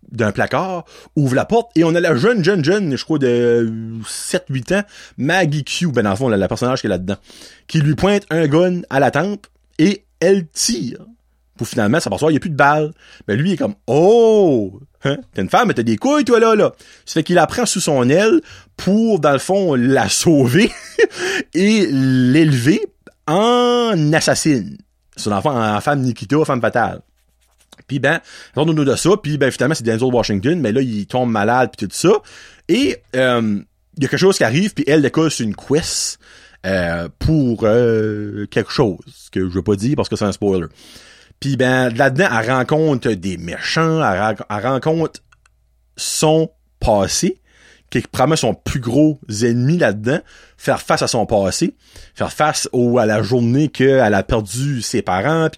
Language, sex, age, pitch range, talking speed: French, male, 30-49, 110-160 Hz, 190 wpm